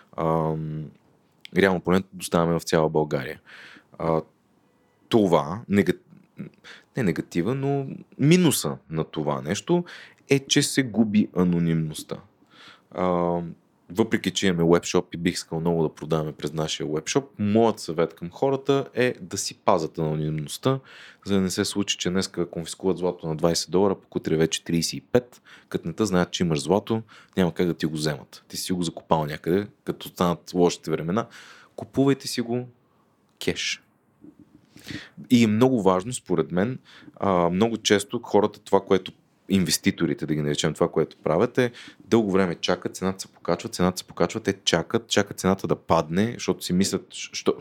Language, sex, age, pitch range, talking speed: Bulgarian, male, 30-49, 85-115 Hz, 155 wpm